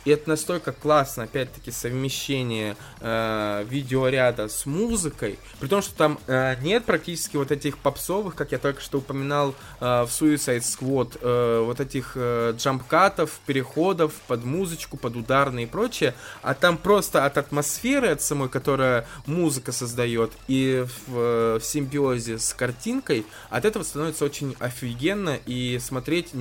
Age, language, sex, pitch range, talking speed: 20-39, Russian, male, 120-150 Hz, 150 wpm